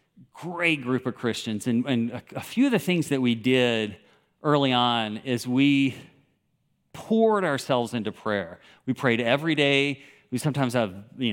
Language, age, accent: English, 50-69, American